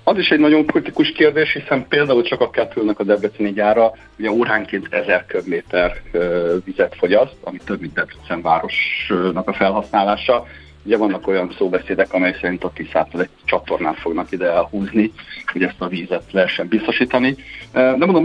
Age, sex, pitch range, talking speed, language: 50-69, male, 95-135 Hz, 160 wpm, Hungarian